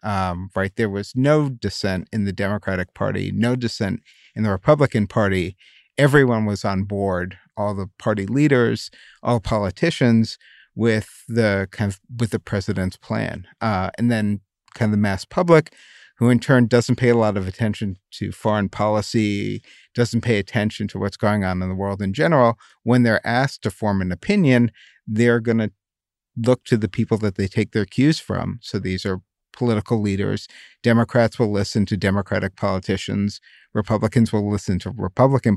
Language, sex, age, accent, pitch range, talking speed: English, male, 50-69, American, 100-120 Hz, 170 wpm